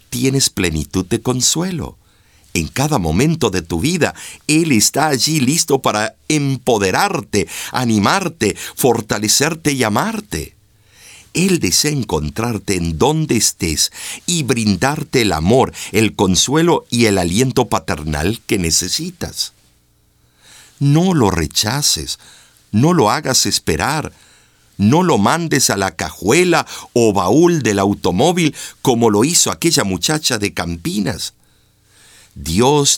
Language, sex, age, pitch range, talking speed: Spanish, male, 50-69, 90-145 Hz, 115 wpm